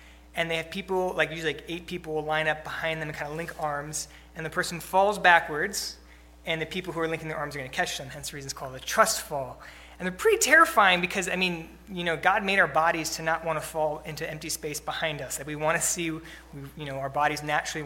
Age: 20-39